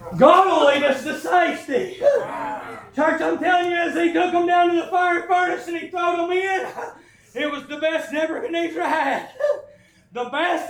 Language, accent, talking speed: English, American, 185 wpm